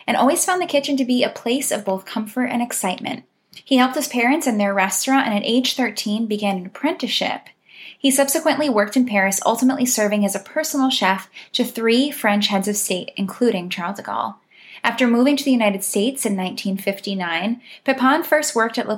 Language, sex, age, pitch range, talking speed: English, female, 10-29, 195-255 Hz, 195 wpm